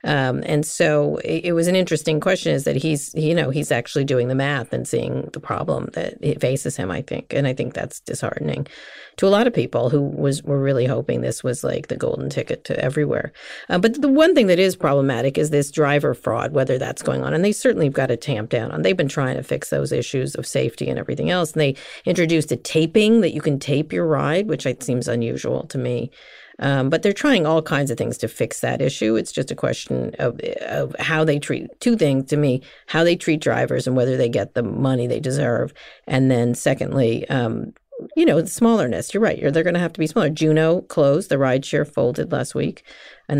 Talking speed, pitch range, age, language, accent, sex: 230 wpm, 130-175 Hz, 40-59, English, American, female